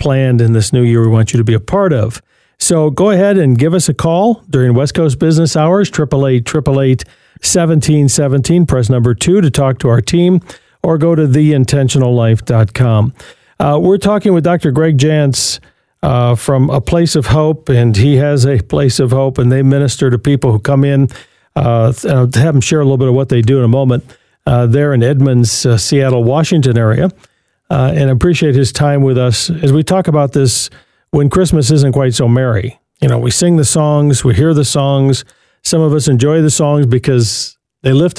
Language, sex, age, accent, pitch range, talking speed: English, male, 50-69, American, 125-155 Hz, 205 wpm